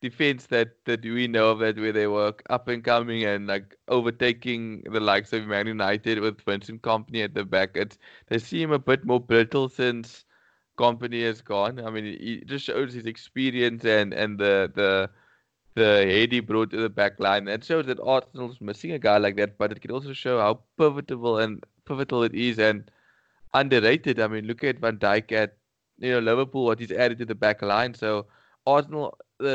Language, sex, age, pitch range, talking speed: English, male, 20-39, 105-125 Hz, 205 wpm